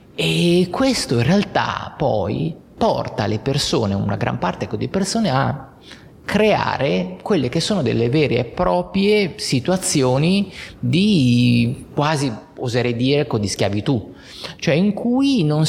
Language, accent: Italian, native